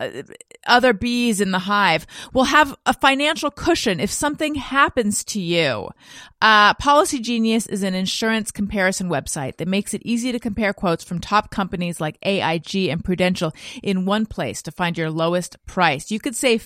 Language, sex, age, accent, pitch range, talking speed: English, female, 30-49, American, 170-215 Hz, 175 wpm